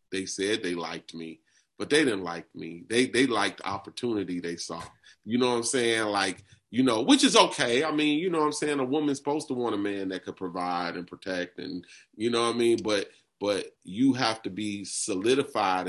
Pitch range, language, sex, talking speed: 95-120 Hz, English, male, 225 wpm